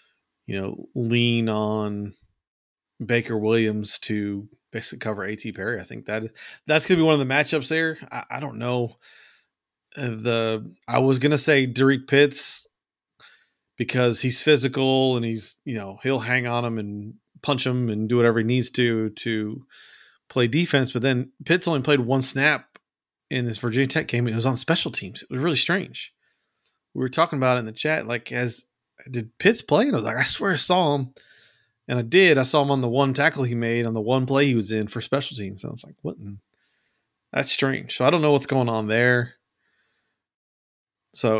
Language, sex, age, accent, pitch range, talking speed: English, male, 30-49, American, 110-135 Hz, 205 wpm